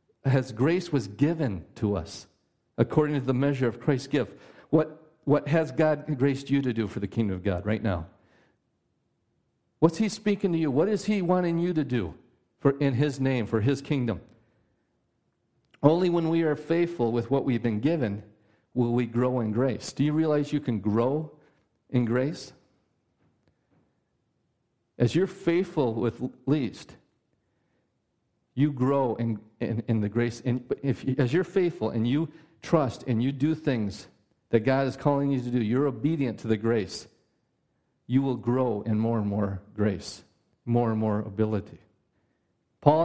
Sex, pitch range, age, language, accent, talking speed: male, 115-155 Hz, 50-69, English, American, 165 wpm